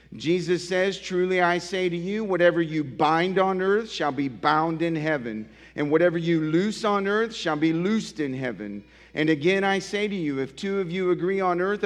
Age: 40-59